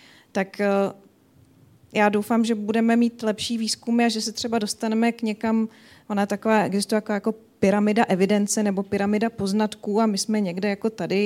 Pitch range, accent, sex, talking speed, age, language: 190-215 Hz, native, female, 165 wpm, 30-49, Czech